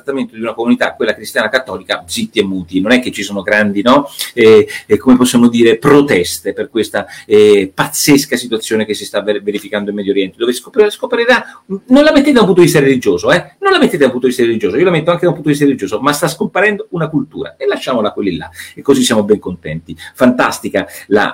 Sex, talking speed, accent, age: male, 230 wpm, native, 40-59